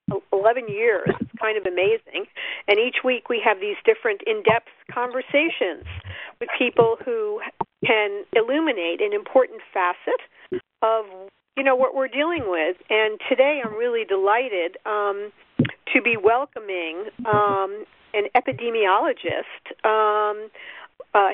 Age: 50-69